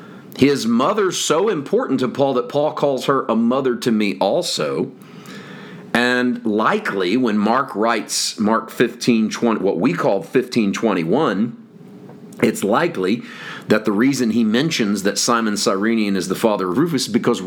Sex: male